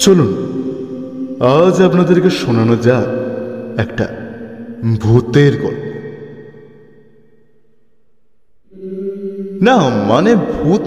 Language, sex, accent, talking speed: Bengali, male, native, 60 wpm